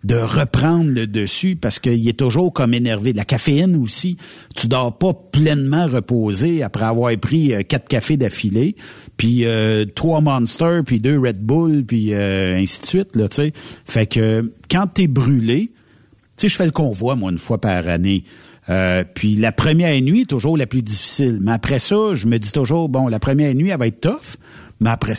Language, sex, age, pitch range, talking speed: French, male, 60-79, 105-145 Hz, 195 wpm